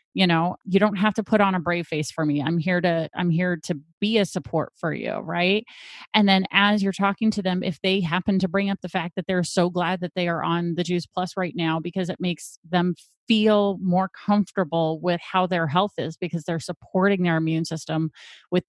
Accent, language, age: American, English, 30-49